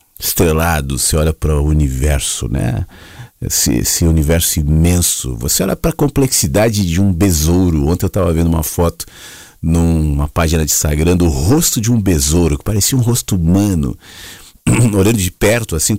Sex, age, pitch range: male, 50-69, 80-115 Hz